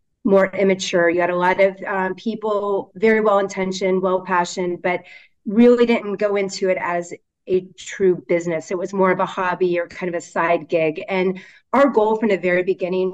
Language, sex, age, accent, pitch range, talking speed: English, female, 30-49, American, 170-200 Hz, 185 wpm